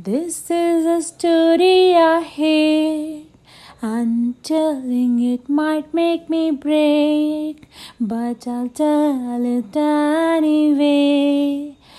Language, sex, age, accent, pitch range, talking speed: Hindi, female, 30-49, native, 255-335 Hz, 90 wpm